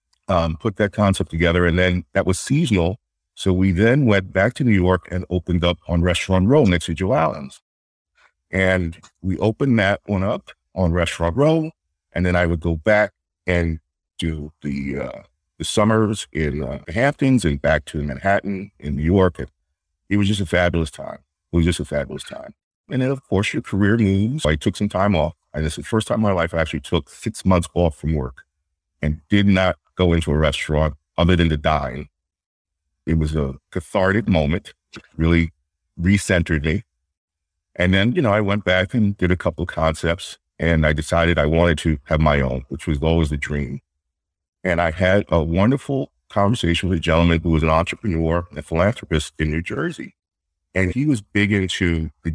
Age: 50-69